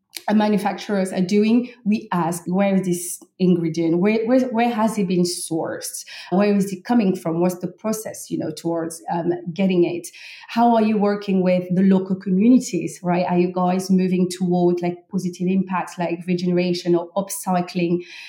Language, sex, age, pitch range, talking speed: English, female, 30-49, 175-205 Hz, 165 wpm